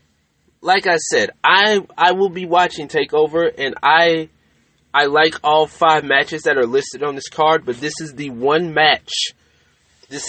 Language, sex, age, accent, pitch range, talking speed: English, male, 20-39, American, 125-165 Hz, 170 wpm